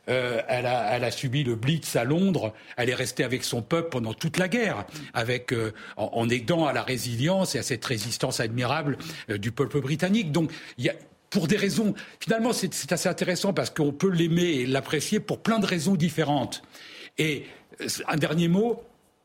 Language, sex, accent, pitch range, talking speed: French, male, French, 125-170 Hz, 195 wpm